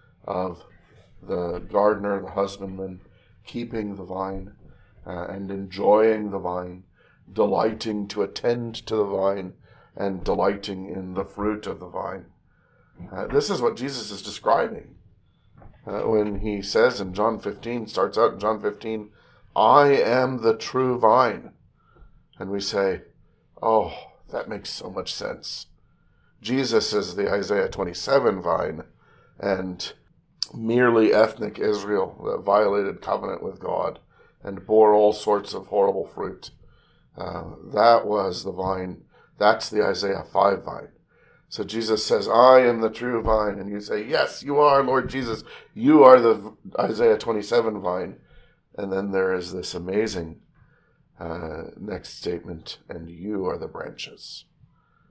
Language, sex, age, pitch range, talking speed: English, male, 40-59, 95-120 Hz, 140 wpm